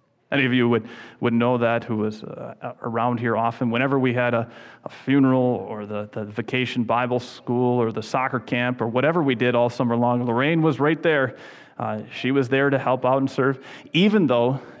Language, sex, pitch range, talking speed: English, male, 120-140 Hz, 205 wpm